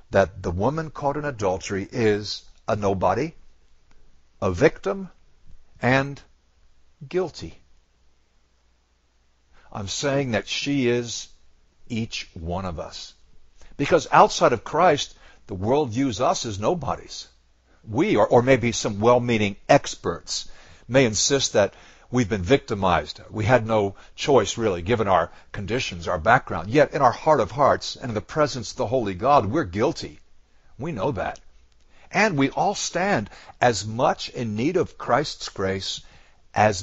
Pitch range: 75-125 Hz